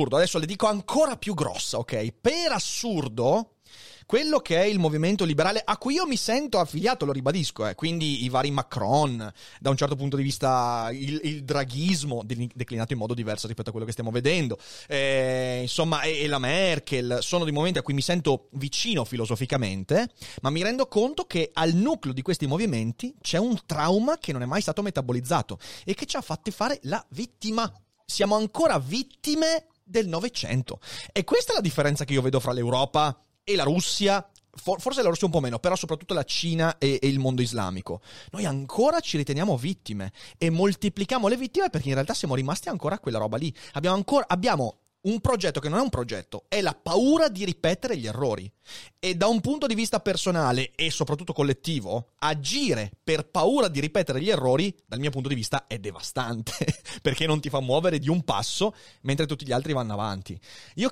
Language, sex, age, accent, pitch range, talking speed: Italian, male, 30-49, native, 130-195 Hz, 195 wpm